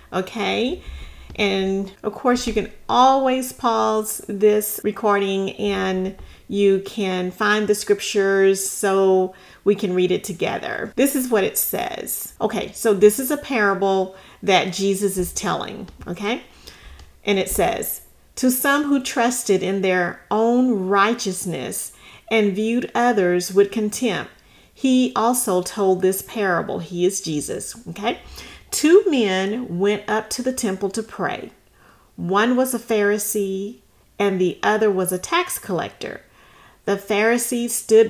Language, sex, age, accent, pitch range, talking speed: English, female, 40-59, American, 190-230 Hz, 135 wpm